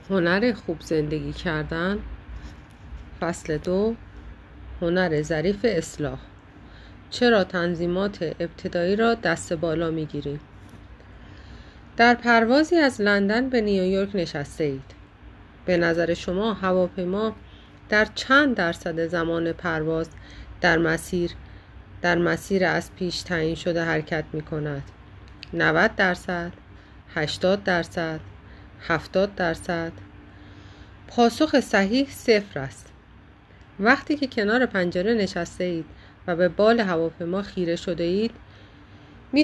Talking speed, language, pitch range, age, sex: 105 wpm, Persian, 160-215 Hz, 30-49, female